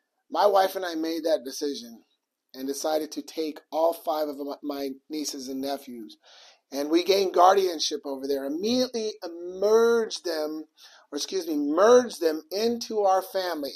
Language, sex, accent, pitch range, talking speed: English, male, American, 155-220 Hz, 155 wpm